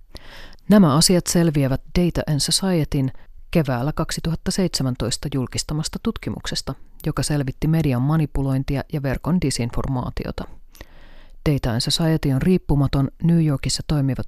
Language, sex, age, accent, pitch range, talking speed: Finnish, female, 30-49, native, 125-160 Hz, 95 wpm